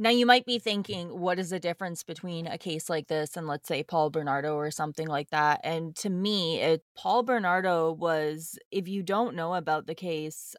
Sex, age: female, 20-39